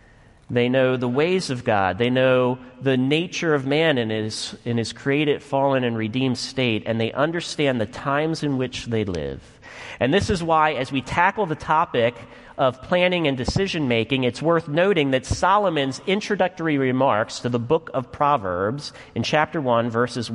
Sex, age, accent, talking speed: male, 40-59, American, 175 wpm